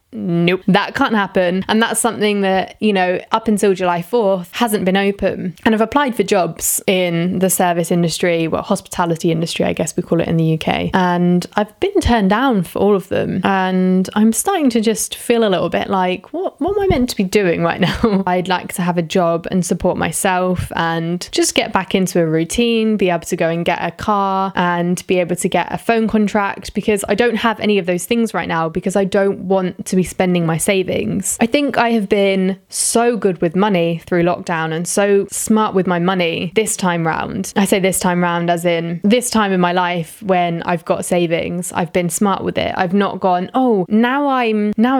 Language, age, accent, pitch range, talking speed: English, 20-39, British, 175-215 Hz, 220 wpm